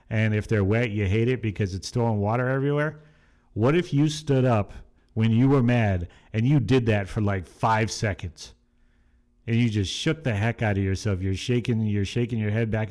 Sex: male